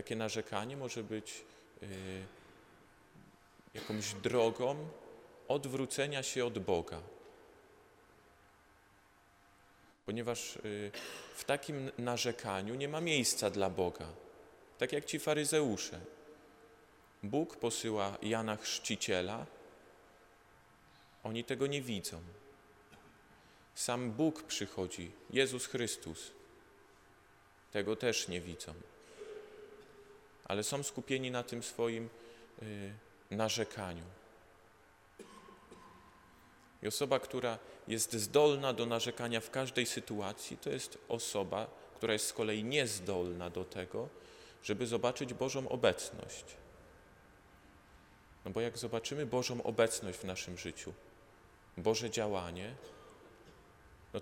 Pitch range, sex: 100-125 Hz, male